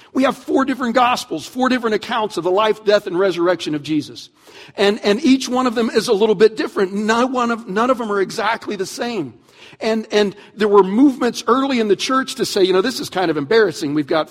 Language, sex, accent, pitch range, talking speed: English, male, American, 170-250 Hz, 240 wpm